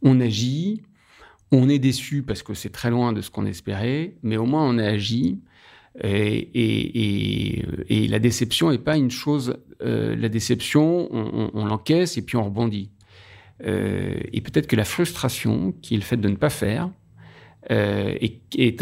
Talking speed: 185 wpm